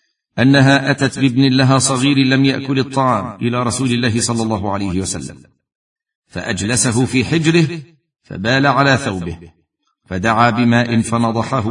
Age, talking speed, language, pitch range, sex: 50-69, 125 wpm, Arabic, 105-135 Hz, male